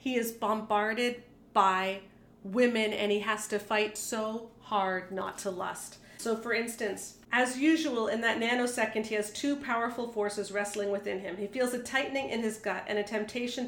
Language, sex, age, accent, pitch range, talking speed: English, female, 40-59, American, 210-245 Hz, 180 wpm